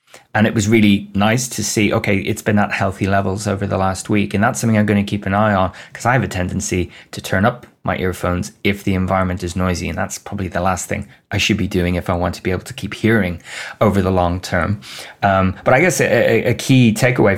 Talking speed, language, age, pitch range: 250 wpm, English, 20-39, 95-115 Hz